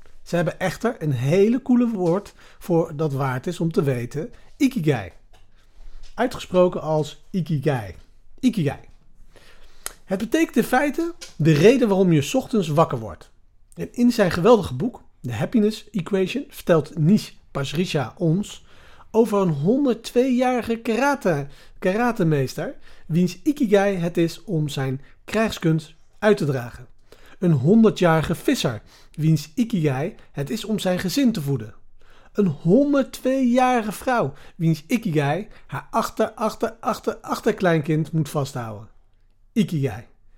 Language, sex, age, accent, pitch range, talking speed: Dutch, male, 40-59, Dutch, 145-220 Hz, 125 wpm